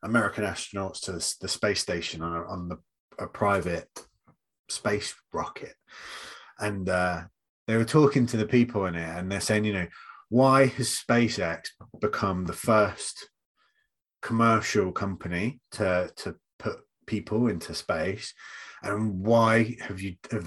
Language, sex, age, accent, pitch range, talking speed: English, male, 30-49, British, 90-115 Hz, 140 wpm